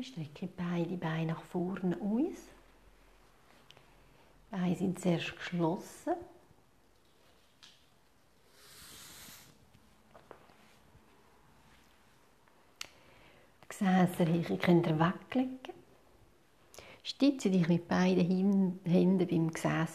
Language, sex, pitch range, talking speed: German, female, 175-210 Hz, 75 wpm